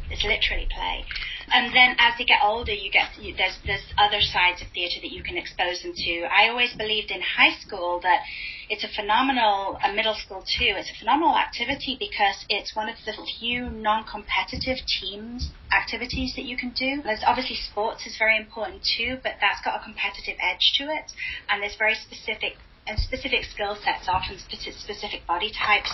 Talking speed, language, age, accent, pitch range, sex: 190 wpm, English, 30-49, British, 190-245 Hz, female